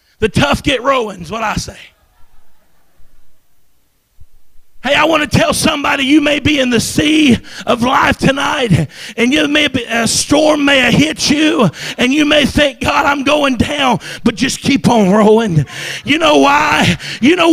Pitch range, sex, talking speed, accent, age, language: 245-325 Hz, male, 175 wpm, American, 40-59, English